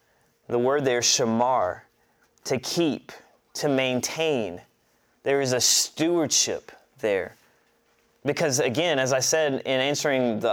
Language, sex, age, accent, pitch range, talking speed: English, male, 30-49, American, 135-185 Hz, 120 wpm